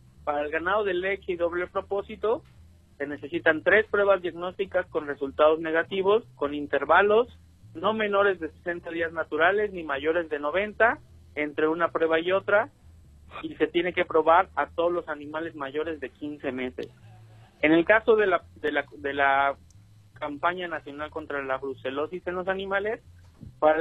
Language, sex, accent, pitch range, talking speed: Spanish, male, Mexican, 145-185 Hz, 155 wpm